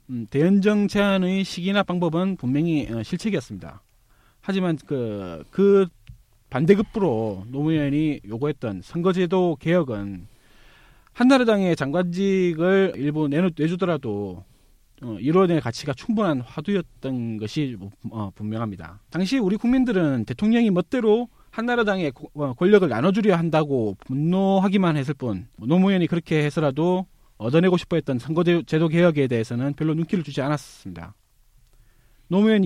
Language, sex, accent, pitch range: Korean, male, native, 120-185 Hz